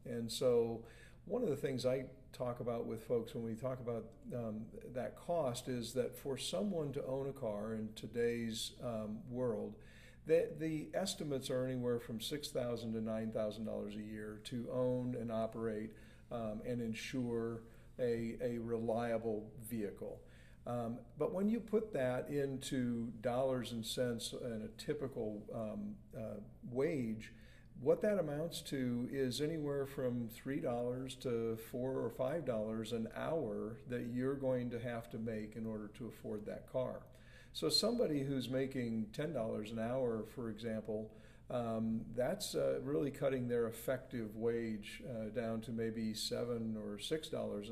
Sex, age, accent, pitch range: male, 50-69, American, 110-130 Hz